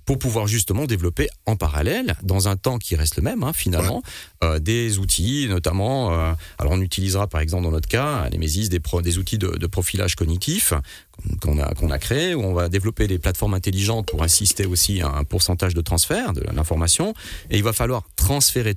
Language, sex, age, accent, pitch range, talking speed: French, male, 40-59, French, 85-115 Hz, 210 wpm